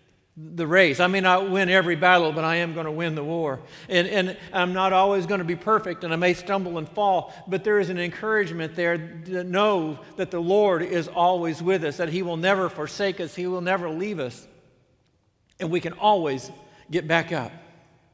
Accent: American